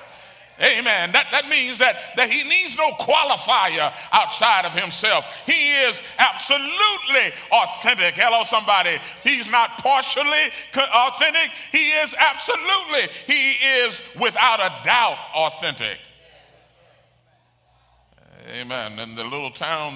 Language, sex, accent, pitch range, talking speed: English, male, American, 140-225 Hz, 110 wpm